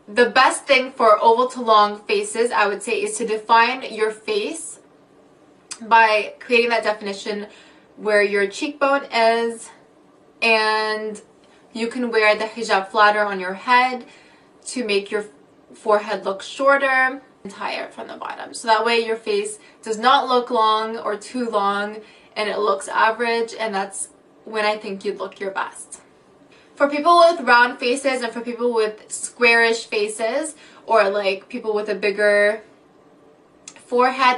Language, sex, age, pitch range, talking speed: English, female, 20-39, 210-245 Hz, 155 wpm